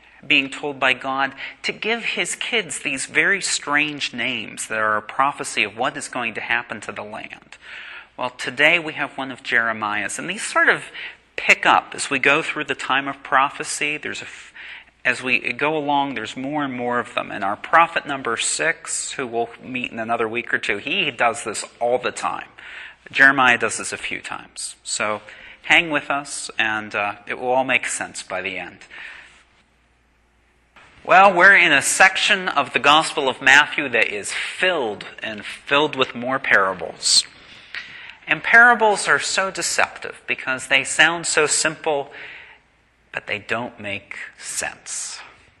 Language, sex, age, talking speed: English, male, 30-49, 170 wpm